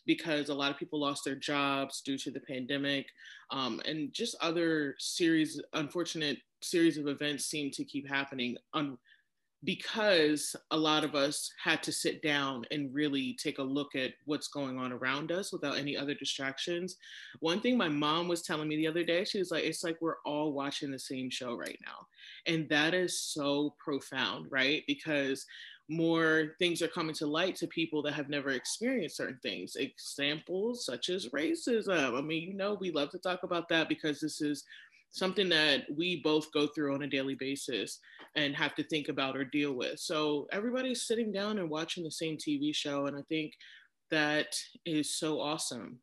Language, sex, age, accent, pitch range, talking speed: English, male, 30-49, American, 140-165 Hz, 190 wpm